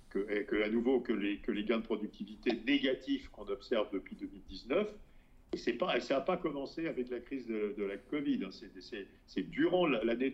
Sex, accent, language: male, French, French